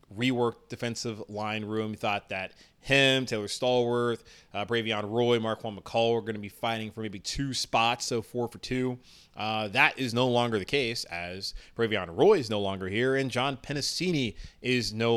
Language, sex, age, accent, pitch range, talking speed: English, male, 30-49, American, 110-140 Hz, 185 wpm